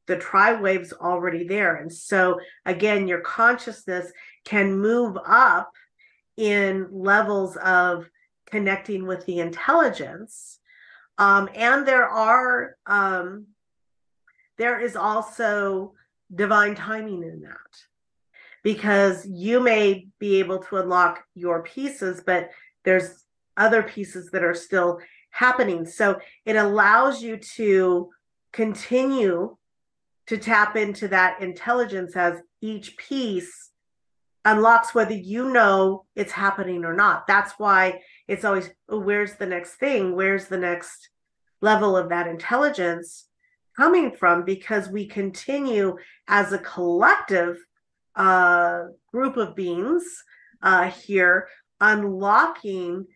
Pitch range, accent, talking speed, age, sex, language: 180-215 Hz, American, 115 wpm, 40-59, female, English